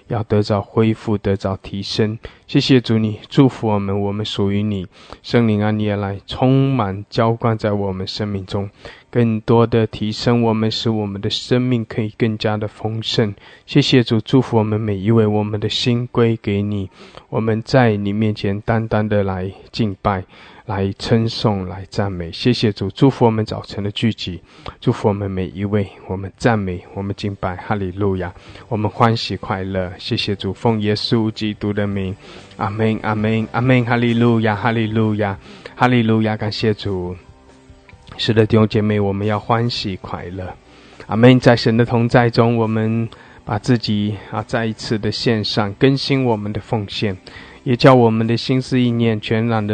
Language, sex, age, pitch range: English, male, 20-39, 100-115 Hz